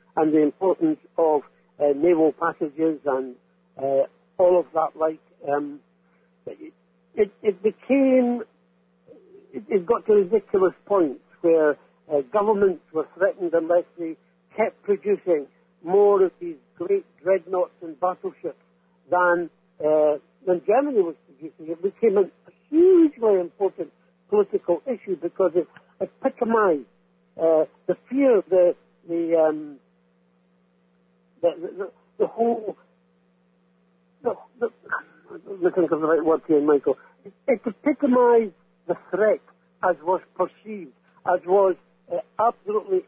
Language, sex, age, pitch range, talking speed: English, male, 60-79, 140-220 Hz, 120 wpm